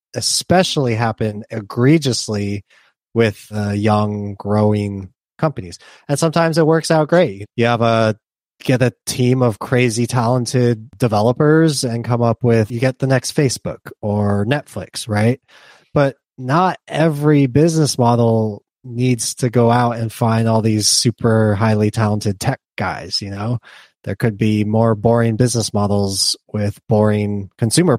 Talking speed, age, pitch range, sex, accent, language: 140 wpm, 20-39, 110-130 Hz, male, American, English